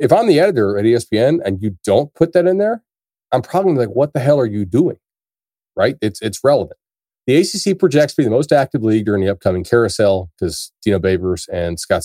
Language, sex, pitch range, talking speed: English, male, 105-140 Hz, 220 wpm